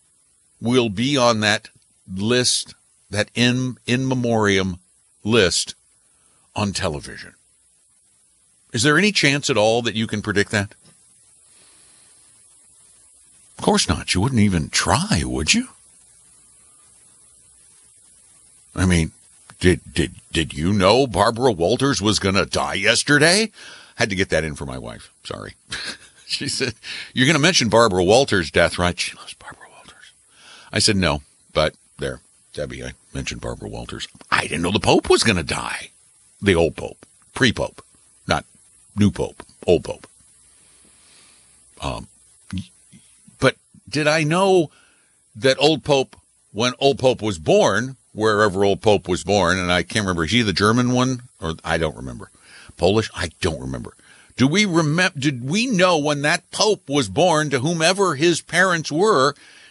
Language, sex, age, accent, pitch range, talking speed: English, male, 60-79, American, 95-145 Hz, 150 wpm